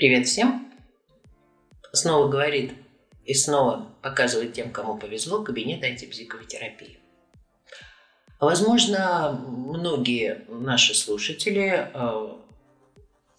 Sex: male